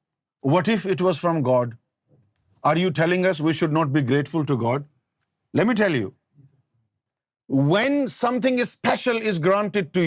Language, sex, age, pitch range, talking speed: Urdu, male, 50-69, 130-190 Hz, 160 wpm